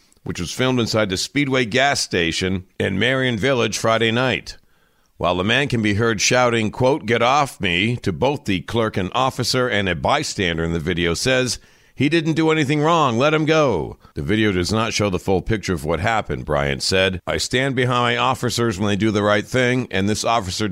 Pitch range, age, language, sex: 95-130 Hz, 50-69, English, male